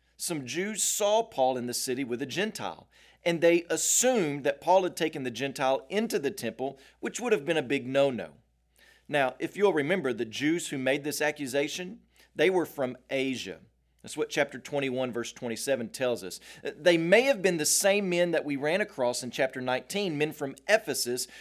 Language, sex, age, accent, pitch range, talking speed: English, male, 40-59, American, 130-165 Hz, 190 wpm